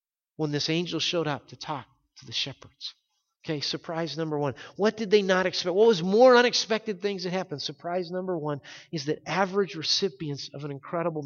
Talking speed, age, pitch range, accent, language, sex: 190 wpm, 50-69, 145-200 Hz, American, English, male